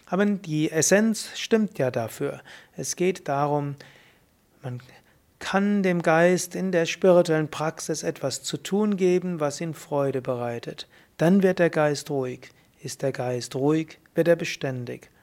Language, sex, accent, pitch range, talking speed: German, male, German, 140-180 Hz, 145 wpm